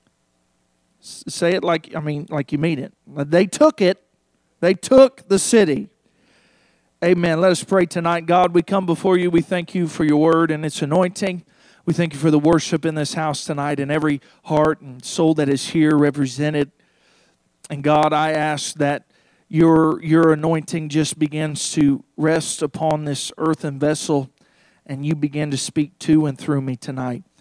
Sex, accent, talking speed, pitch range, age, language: male, American, 175 wpm, 140-175 Hz, 40-59, English